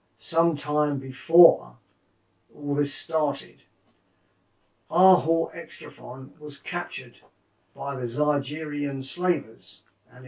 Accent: British